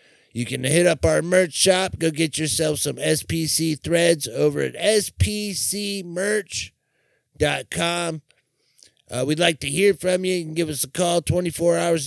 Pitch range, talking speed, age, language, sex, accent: 150-185 Hz, 150 wpm, 30-49, English, male, American